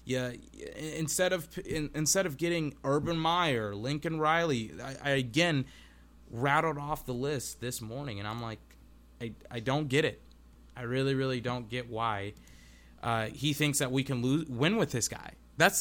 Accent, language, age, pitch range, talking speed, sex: American, English, 20-39, 110-170 Hz, 170 wpm, male